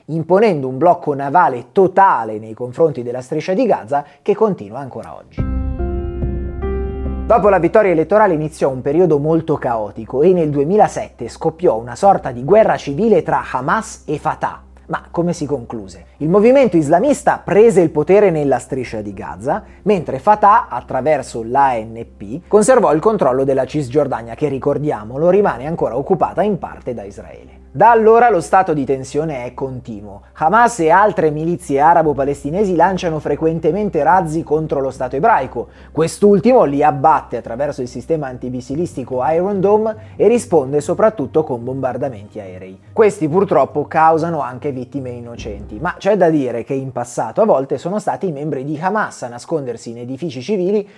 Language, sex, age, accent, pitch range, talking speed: English, male, 30-49, Italian, 125-185 Hz, 155 wpm